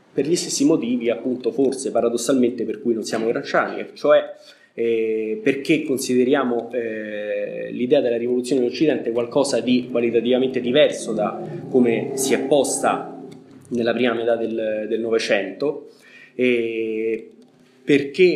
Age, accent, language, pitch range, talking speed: 20-39, native, Italian, 115-150 Hz, 120 wpm